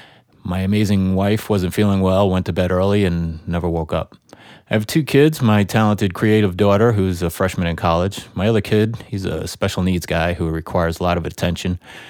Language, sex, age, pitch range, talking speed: English, male, 30-49, 85-105 Hz, 205 wpm